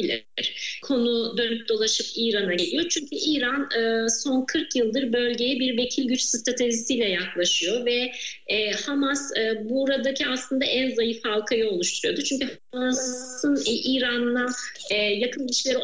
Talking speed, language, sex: 110 wpm, Turkish, female